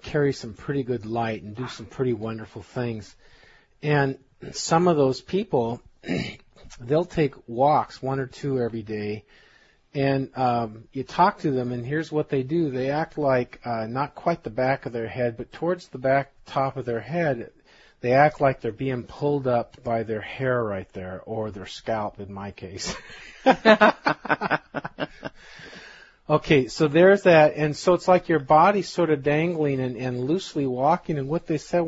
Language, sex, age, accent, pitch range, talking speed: English, male, 40-59, American, 125-165 Hz, 175 wpm